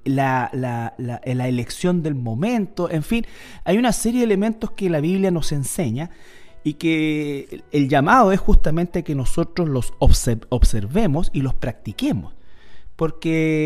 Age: 30-49